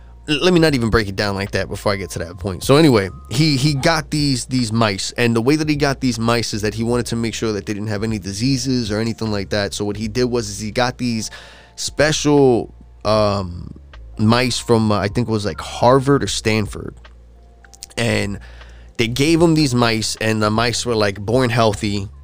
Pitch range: 100-125 Hz